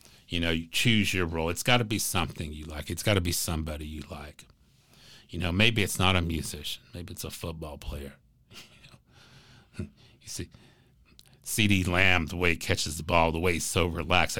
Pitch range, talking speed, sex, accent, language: 80-100 Hz, 210 wpm, male, American, English